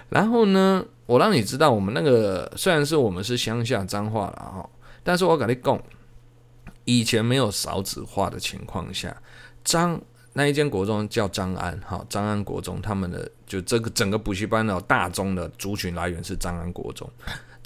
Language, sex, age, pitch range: Chinese, male, 20-39, 95-125 Hz